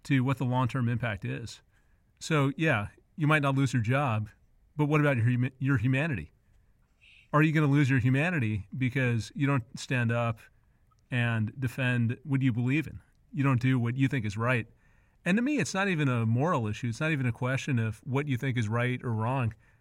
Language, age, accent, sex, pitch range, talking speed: English, 30-49, American, male, 115-140 Hz, 205 wpm